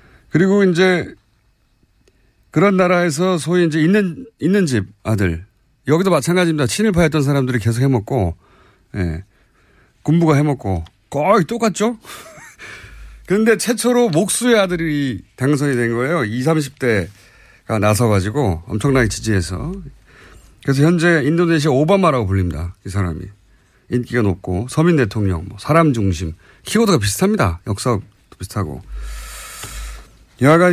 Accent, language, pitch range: native, Korean, 100-165 Hz